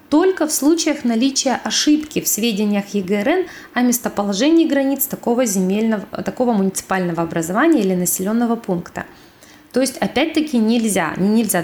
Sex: female